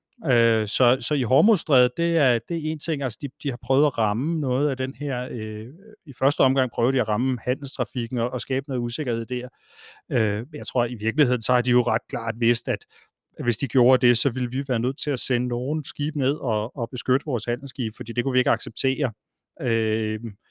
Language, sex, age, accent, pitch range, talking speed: Danish, male, 30-49, native, 115-135 Hz, 220 wpm